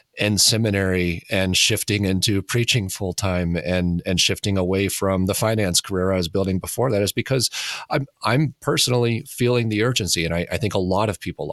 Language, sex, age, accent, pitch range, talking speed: English, male, 30-49, American, 95-120 Hz, 185 wpm